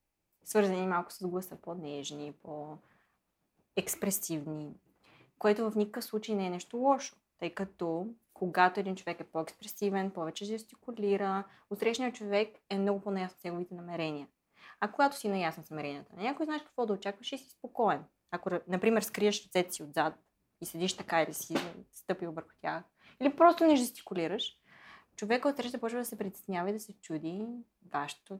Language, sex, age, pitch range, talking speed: Bulgarian, female, 20-39, 170-225 Hz, 160 wpm